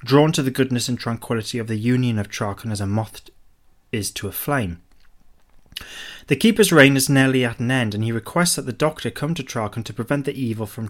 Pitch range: 115-145 Hz